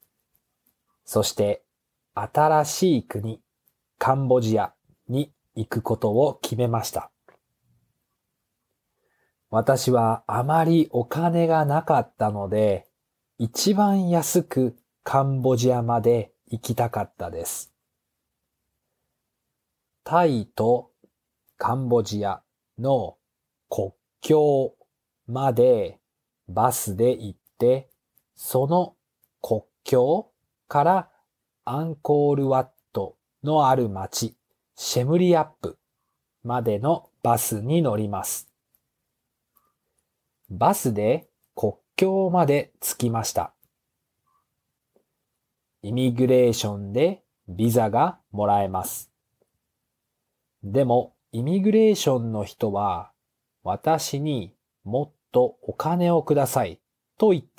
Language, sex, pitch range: Japanese, male, 115-155 Hz